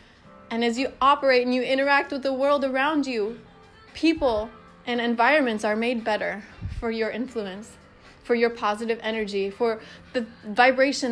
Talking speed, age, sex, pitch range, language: 150 wpm, 20-39, female, 215-270 Hz, English